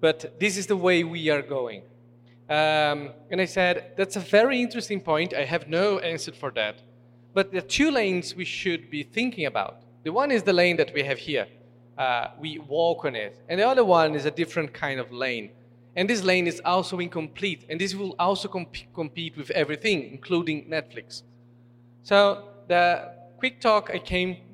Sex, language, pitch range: male, Portuguese, 135-190 Hz